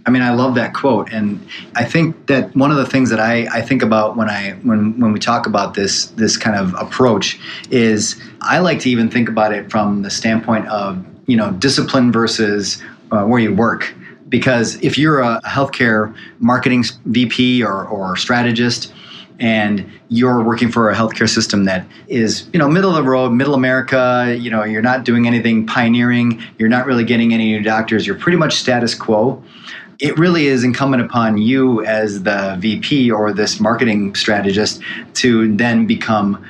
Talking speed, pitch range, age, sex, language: 185 wpm, 110-130 Hz, 30-49, male, English